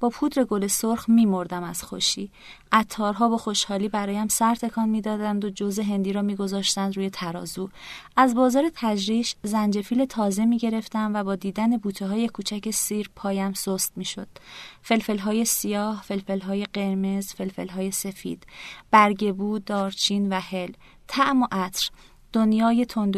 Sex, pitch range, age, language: female, 190-215 Hz, 30-49, Persian